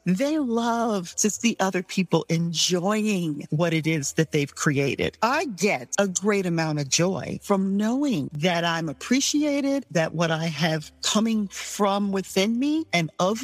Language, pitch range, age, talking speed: English, 165-230 Hz, 40-59, 155 wpm